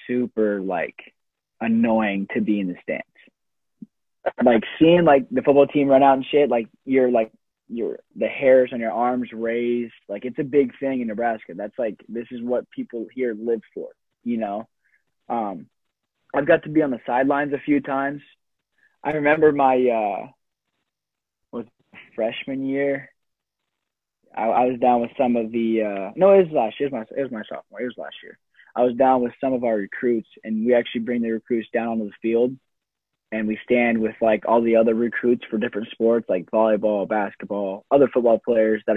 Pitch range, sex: 110-130 Hz, male